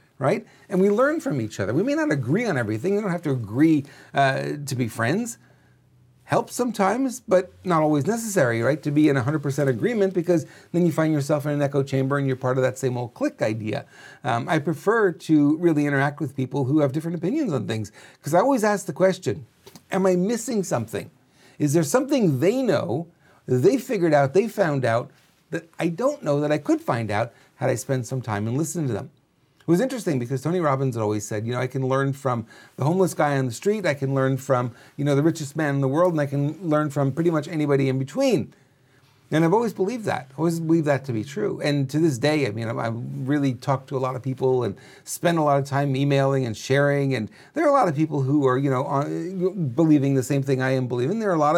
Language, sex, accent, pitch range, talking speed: English, male, American, 135-175 Hz, 240 wpm